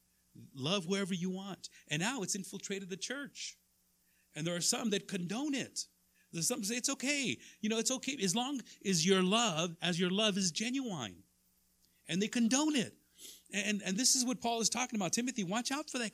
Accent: American